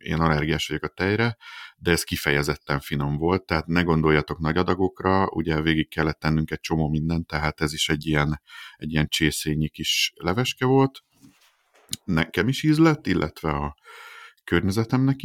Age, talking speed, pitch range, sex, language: 50-69, 155 wpm, 80-105 Hz, male, Hungarian